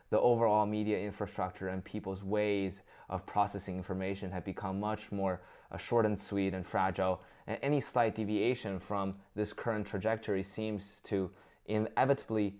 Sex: male